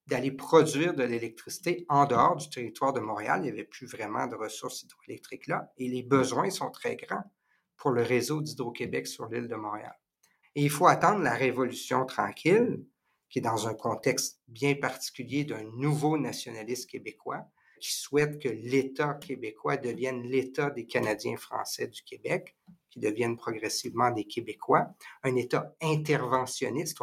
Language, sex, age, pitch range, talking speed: French, male, 50-69, 125-160 Hz, 160 wpm